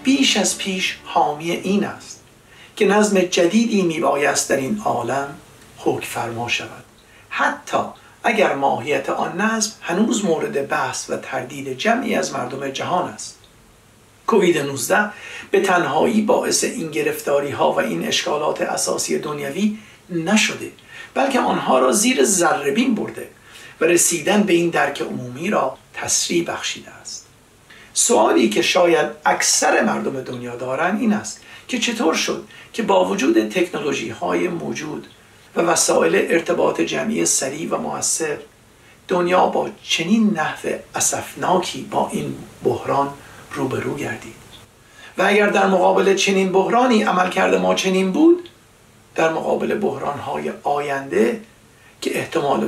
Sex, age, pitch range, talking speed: male, 60-79, 140-210 Hz, 130 wpm